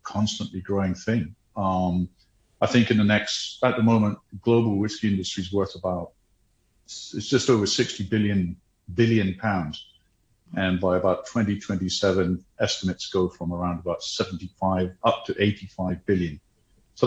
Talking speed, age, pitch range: 155 wpm, 50-69, 95-110 Hz